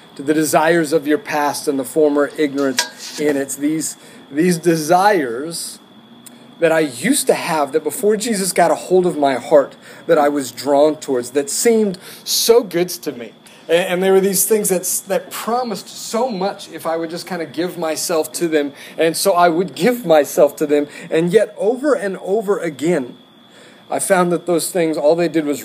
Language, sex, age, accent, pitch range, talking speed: English, male, 30-49, American, 150-185 Hz, 190 wpm